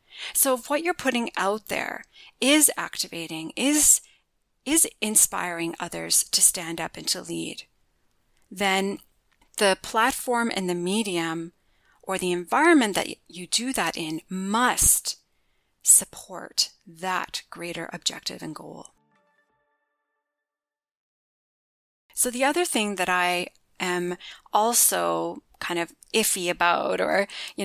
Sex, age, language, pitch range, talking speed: female, 30-49, English, 170-230 Hz, 115 wpm